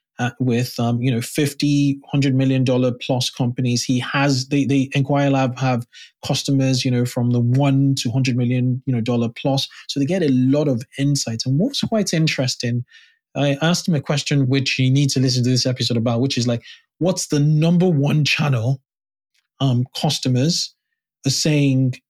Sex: male